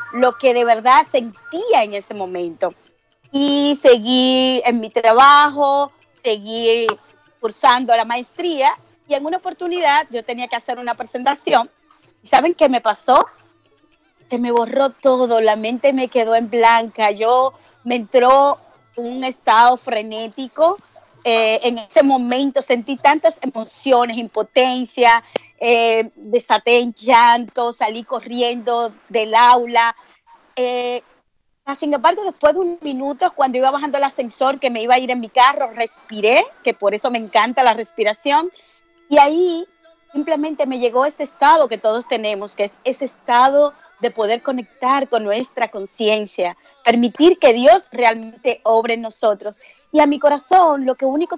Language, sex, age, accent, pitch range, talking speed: Spanish, female, 30-49, American, 230-285 Hz, 145 wpm